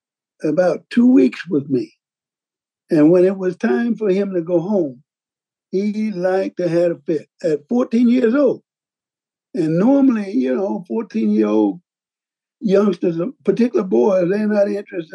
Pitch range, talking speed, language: 170-240 Hz, 155 wpm, English